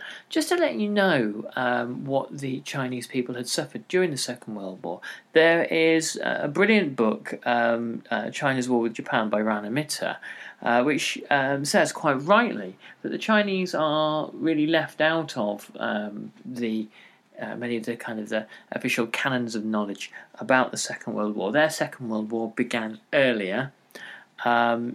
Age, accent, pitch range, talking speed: 40-59, British, 115-145 Hz, 170 wpm